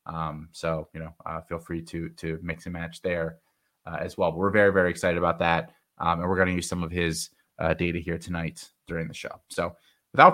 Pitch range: 85-105 Hz